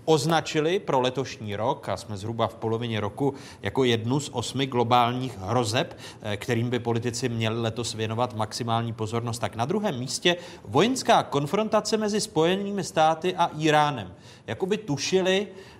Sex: male